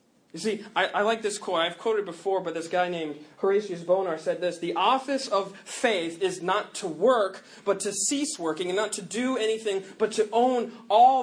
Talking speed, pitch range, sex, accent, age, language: 215 wpm, 195-250 Hz, male, American, 20-39, English